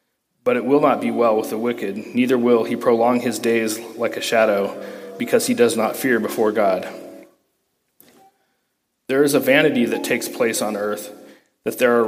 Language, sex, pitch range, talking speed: English, male, 115-140 Hz, 185 wpm